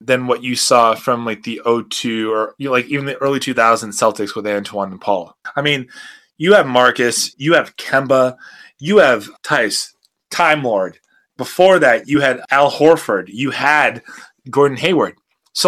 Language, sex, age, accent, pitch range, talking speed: English, male, 20-39, American, 120-155 Hz, 175 wpm